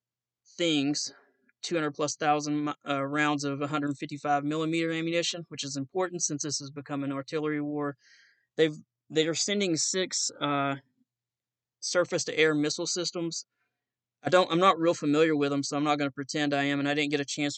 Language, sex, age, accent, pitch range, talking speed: English, male, 20-39, American, 140-155 Hz, 175 wpm